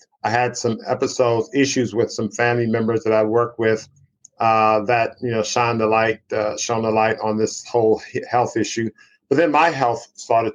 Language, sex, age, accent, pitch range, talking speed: English, male, 50-69, American, 110-130 Hz, 195 wpm